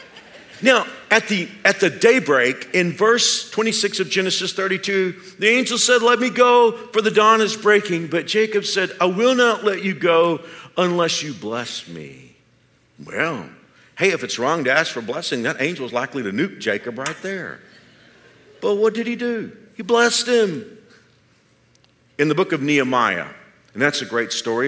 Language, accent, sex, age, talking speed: English, American, male, 50-69, 175 wpm